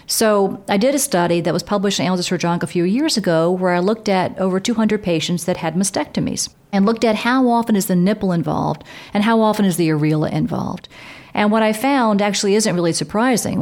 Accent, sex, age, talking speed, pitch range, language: American, female, 40-59, 220 wpm, 170-215 Hz, English